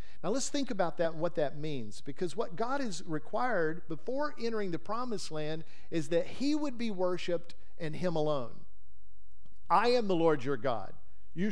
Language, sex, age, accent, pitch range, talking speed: English, male, 50-69, American, 150-210 Hz, 180 wpm